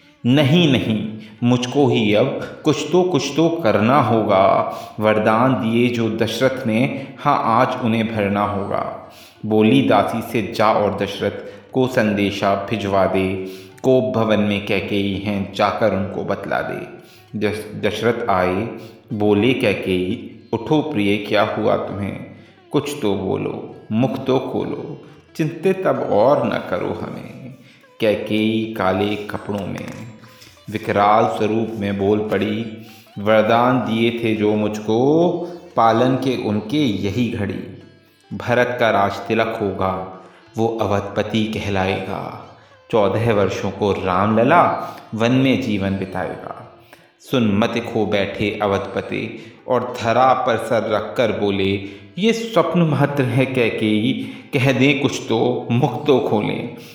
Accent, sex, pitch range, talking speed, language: native, male, 100-125 Hz, 125 wpm, Hindi